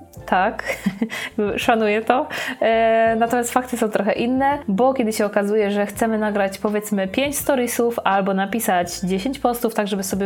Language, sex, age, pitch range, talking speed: Polish, female, 20-39, 200-240 Hz, 145 wpm